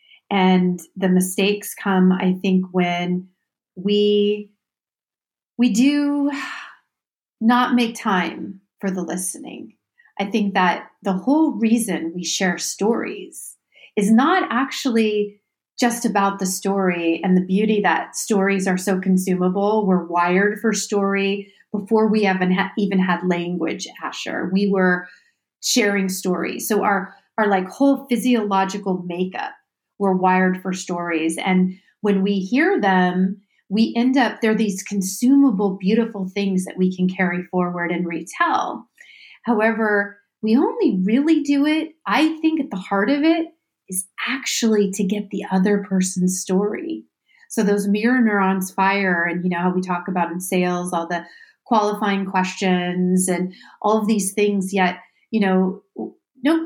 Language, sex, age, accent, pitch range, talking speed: English, female, 40-59, American, 185-220 Hz, 140 wpm